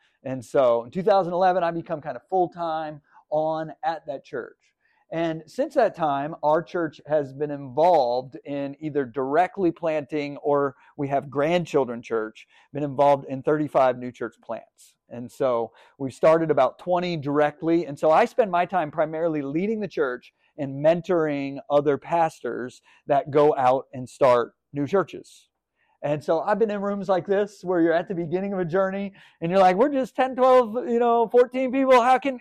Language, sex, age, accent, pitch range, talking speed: English, male, 40-59, American, 145-215 Hz, 175 wpm